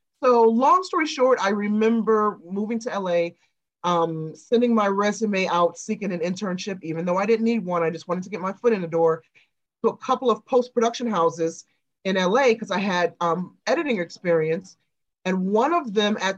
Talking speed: 190 wpm